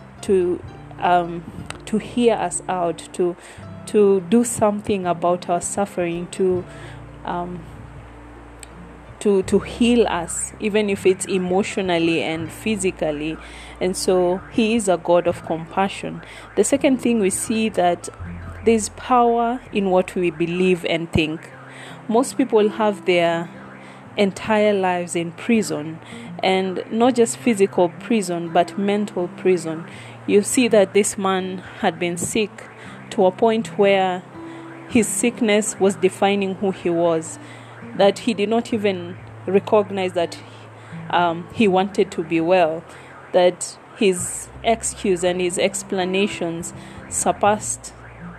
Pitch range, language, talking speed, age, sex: 170-205 Hz, English, 125 wpm, 20-39, female